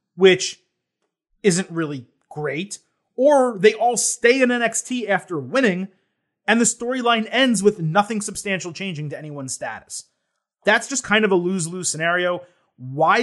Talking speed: 140 wpm